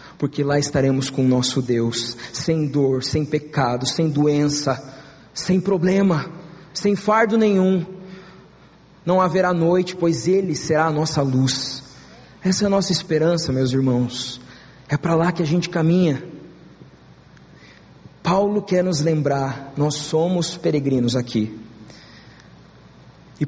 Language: Portuguese